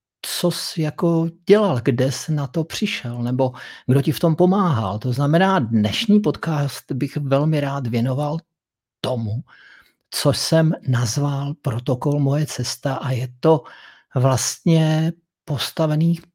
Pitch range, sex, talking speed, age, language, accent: 120-145 Hz, male, 130 wpm, 50-69, Czech, native